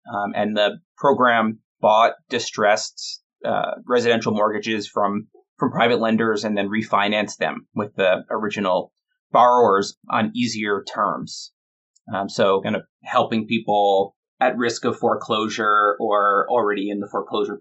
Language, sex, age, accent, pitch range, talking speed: English, male, 30-49, American, 105-125 Hz, 135 wpm